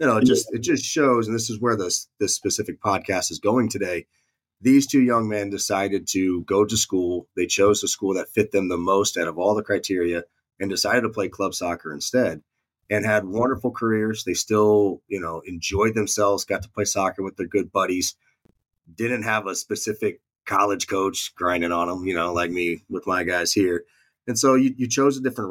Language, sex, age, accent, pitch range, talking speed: English, male, 30-49, American, 95-120 Hz, 210 wpm